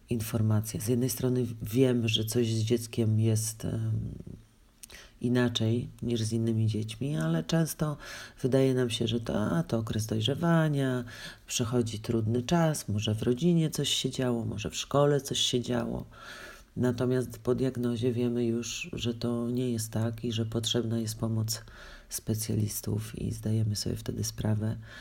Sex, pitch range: male, 110-125 Hz